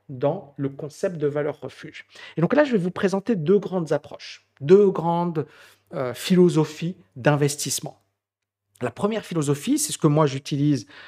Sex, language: male, French